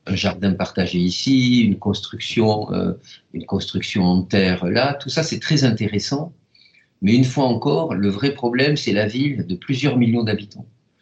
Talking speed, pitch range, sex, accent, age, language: 160 wpm, 100-140 Hz, male, French, 50-69, French